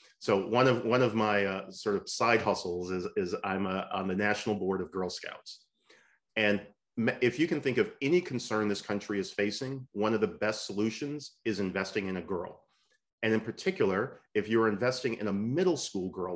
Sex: male